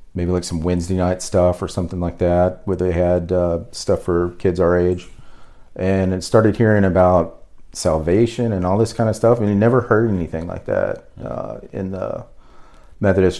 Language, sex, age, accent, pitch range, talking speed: English, male, 40-59, American, 85-100 Hz, 190 wpm